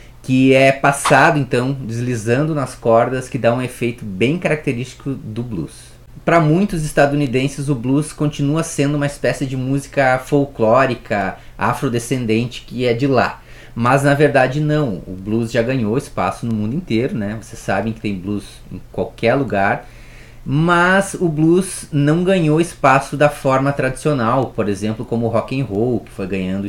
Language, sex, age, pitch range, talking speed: Portuguese, male, 20-39, 115-150 Hz, 160 wpm